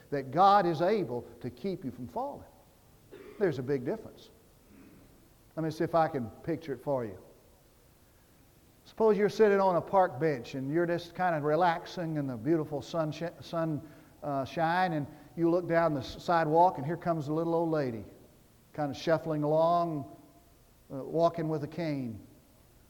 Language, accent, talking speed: English, American, 165 wpm